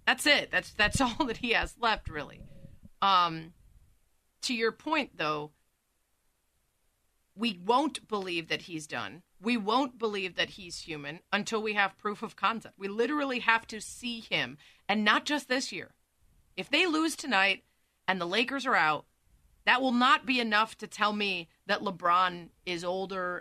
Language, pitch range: English, 175-230 Hz